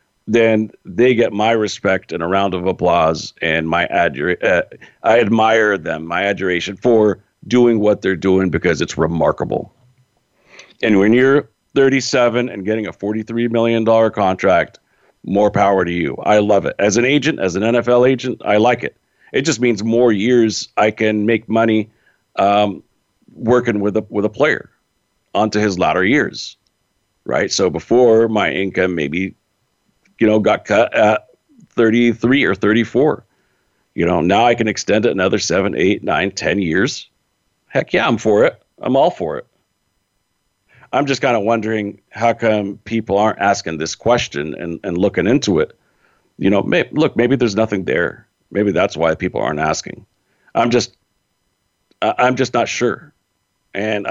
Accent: American